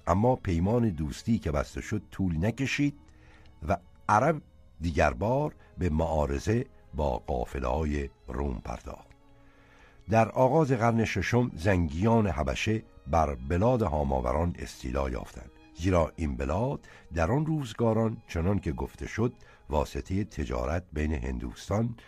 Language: Persian